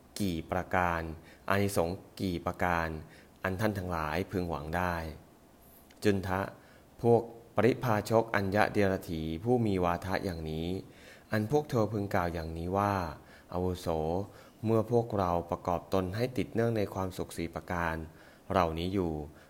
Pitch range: 85-100 Hz